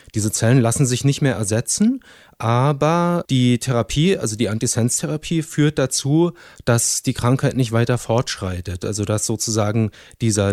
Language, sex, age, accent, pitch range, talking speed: German, male, 30-49, German, 115-140 Hz, 140 wpm